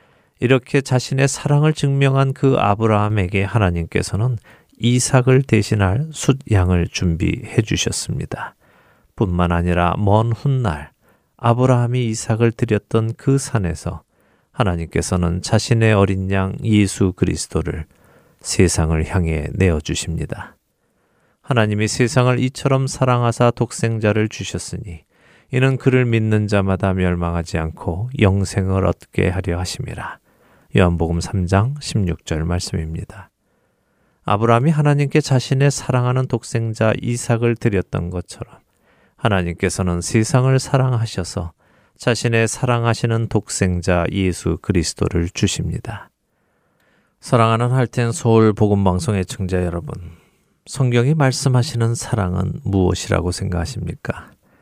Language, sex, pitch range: Korean, male, 90-125 Hz